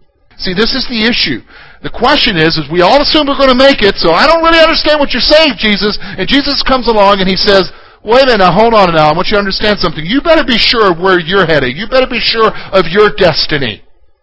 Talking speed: 255 wpm